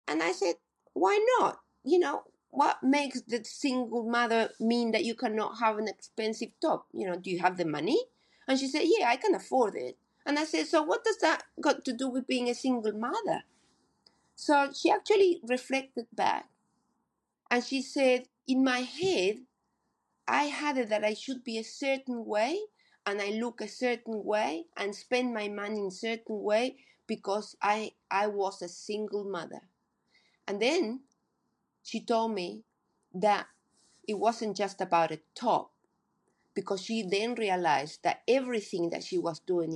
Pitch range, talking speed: 200-260 Hz, 170 wpm